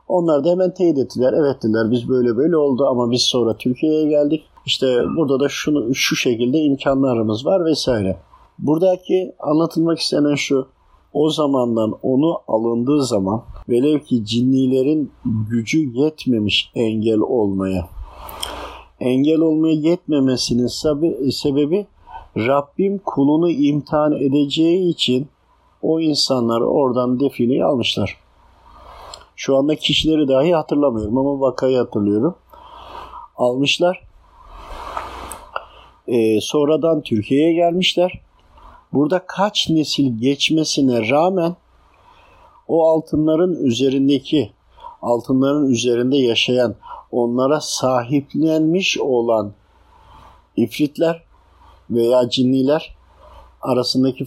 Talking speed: 95 wpm